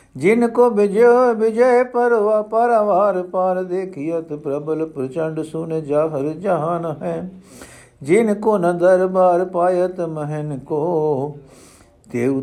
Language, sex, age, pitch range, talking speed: Punjabi, male, 60-79, 140-185 Hz, 105 wpm